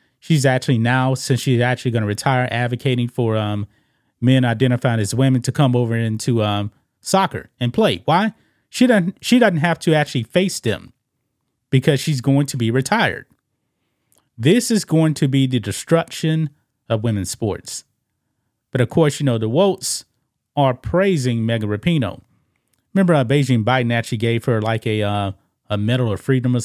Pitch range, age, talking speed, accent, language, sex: 115-135 Hz, 30-49, 170 wpm, American, English, male